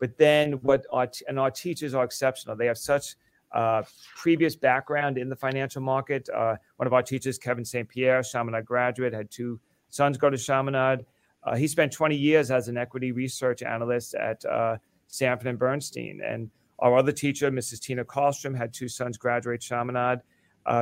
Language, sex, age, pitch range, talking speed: English, male, 40-59, 120-140 Hz, 180 wpm